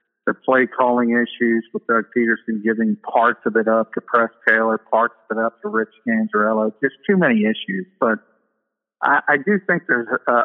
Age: 50-69